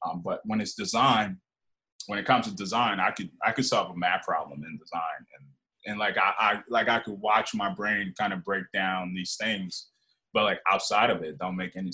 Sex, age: male, 20-39